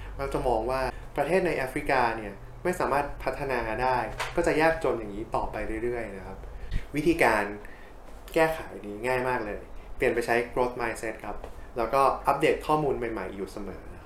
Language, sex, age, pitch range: Thai, male, 20-39, 105-135 Hz